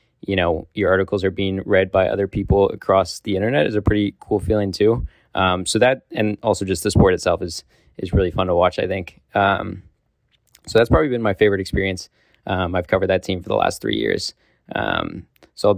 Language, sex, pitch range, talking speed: English, male, 95-105 Hz, 215 wpm